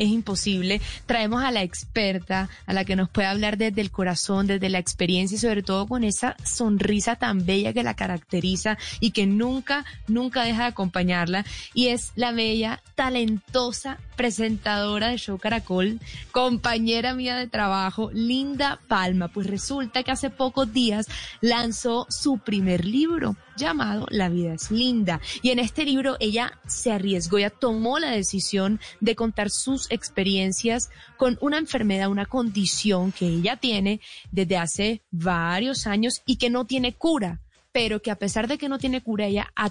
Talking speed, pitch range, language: 165 wpm, 195-245 Hz, English